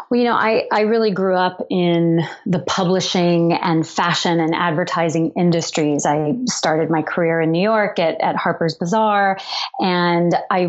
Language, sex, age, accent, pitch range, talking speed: English, female, 30-49, American, 160-185 Hz, 165 wpm